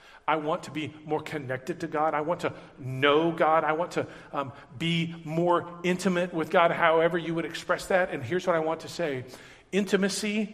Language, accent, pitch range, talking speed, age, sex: English, American, 135-180 Hz, 200 wpm, 40-59, male